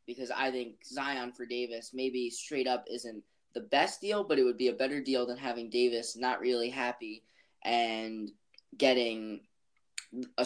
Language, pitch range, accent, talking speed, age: English, 120-155 Hz, American, 165 wpm, 10-29